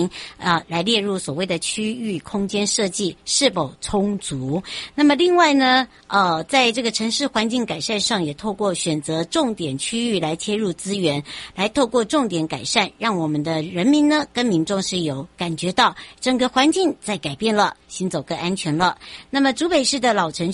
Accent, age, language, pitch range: American, 60-79, Chinese, 170-230 Hz